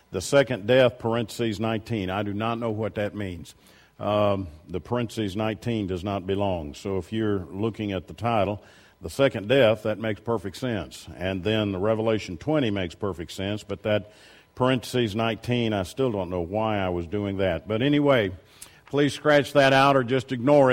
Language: English